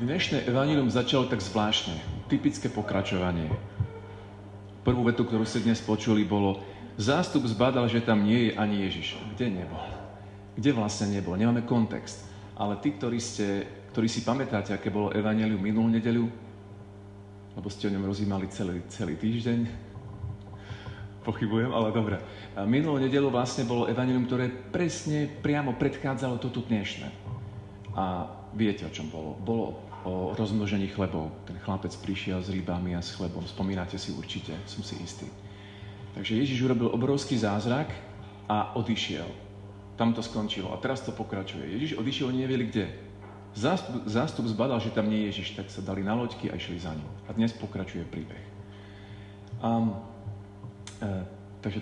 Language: Slovak